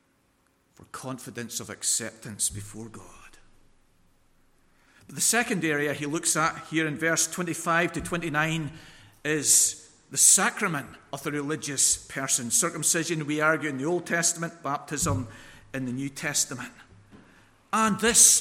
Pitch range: 155-210 Hz